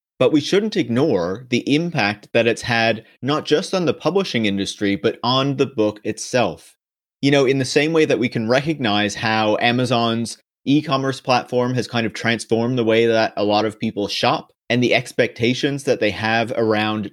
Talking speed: 185 wpm